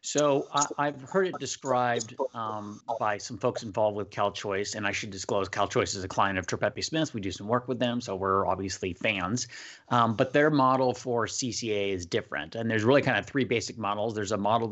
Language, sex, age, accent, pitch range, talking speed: English, male, 30-49, American, 100-125 Hz, 215 wpm